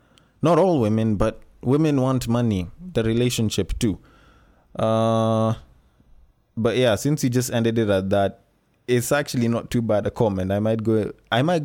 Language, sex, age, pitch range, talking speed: English, male, 20-39, 105-140 Hz, 165 wpm